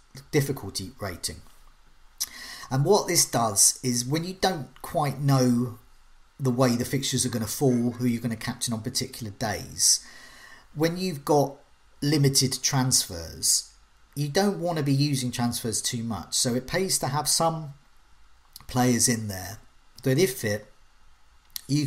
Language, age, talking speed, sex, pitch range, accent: English, 40-59, 150 wpm, male, 110-135 Hz, British